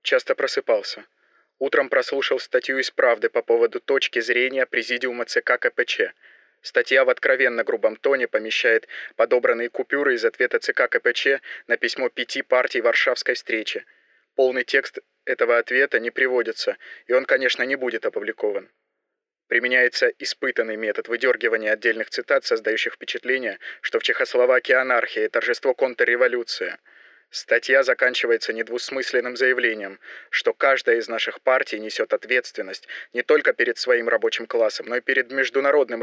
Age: 20-39